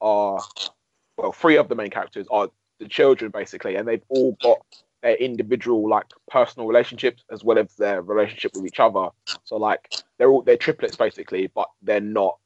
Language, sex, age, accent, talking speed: English, male, 20-39, British, 185 wpm